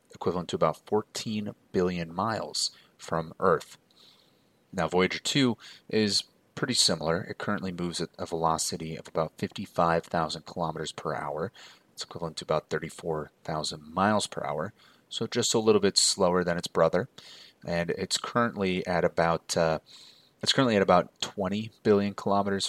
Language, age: English, 30-49